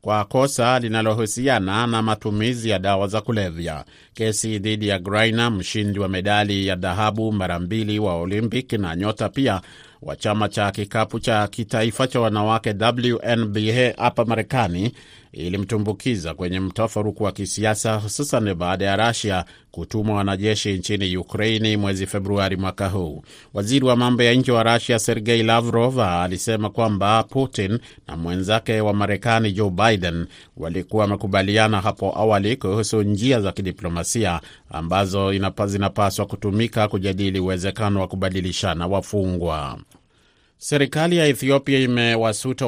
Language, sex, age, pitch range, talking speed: Swahili, male, 30-49, 100-115 Hz, 130 wpm